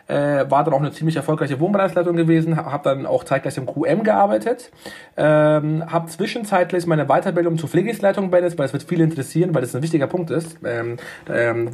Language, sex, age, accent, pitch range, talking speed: German, male, 40-59, German, 145-170 Hz, 185 wpm